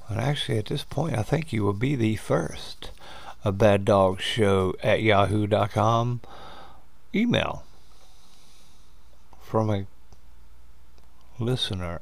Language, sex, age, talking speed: English, male, 60-79, 110 wpm